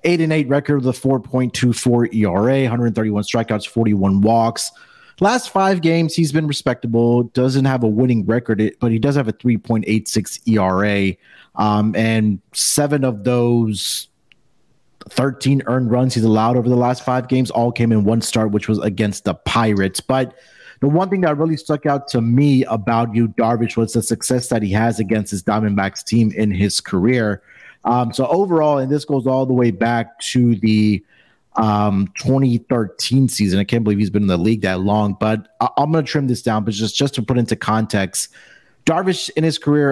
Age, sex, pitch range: 30-49, male, 110-130 Hz